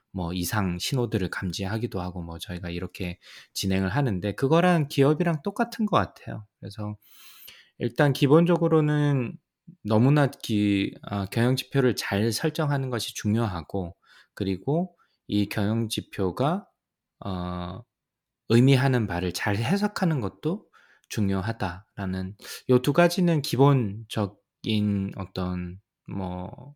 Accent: native